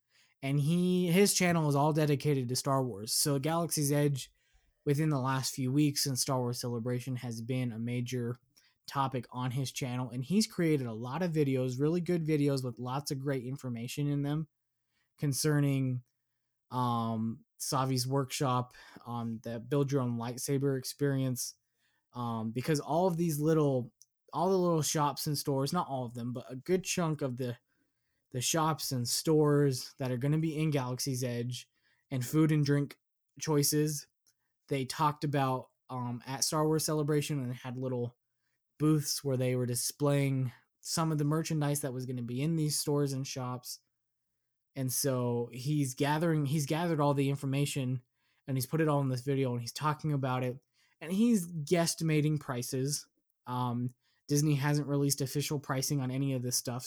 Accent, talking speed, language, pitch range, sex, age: American, 175 wpm, English, 125-150 Hz, male, 20-39